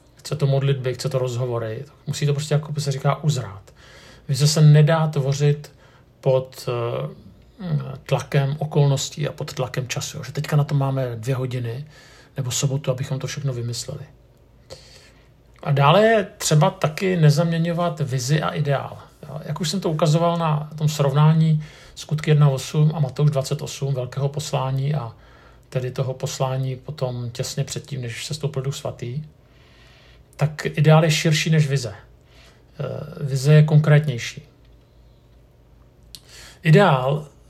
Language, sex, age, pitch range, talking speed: Czech, male, 50-69, 130-155 Hz, 135 wpm